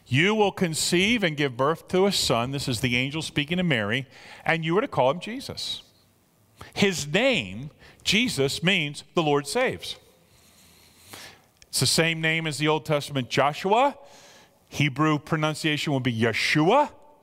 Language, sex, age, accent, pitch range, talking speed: English, male, 40-59, American, 130-185 Hz, 155 wpm